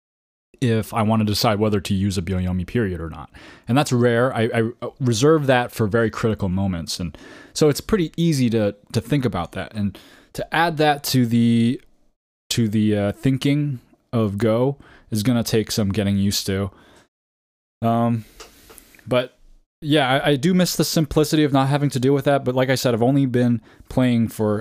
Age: 20-39